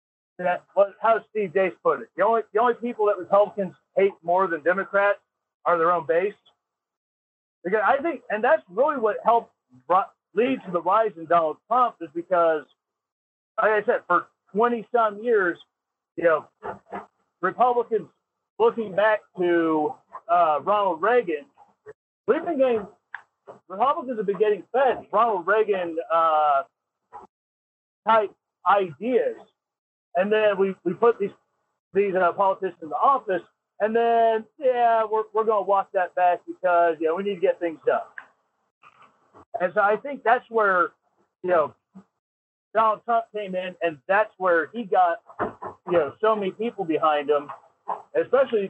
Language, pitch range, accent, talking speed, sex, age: English, 180-230 Hz, American, 155 wpm, male, 40-59